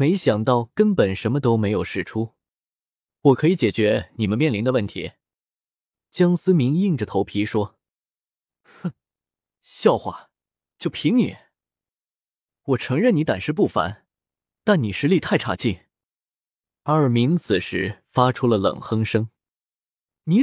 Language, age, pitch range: Chinese, 20-39, 110-160 Hz